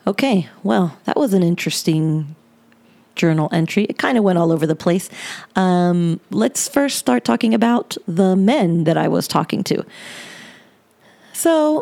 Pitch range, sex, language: 165-200 Hz, female, English